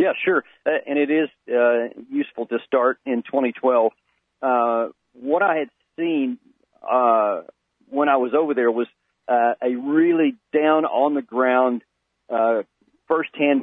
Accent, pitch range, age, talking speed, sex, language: American, 120-145 Hz, 40-59, 145 wpm, male, English